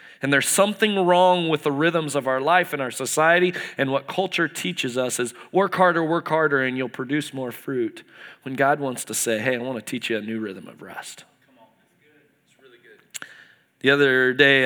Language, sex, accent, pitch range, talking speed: English, male, American, 125-165 Hz, 190 wpm